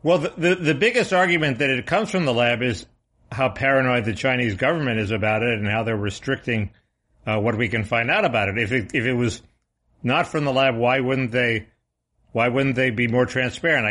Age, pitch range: 60-79, 110-135 Hz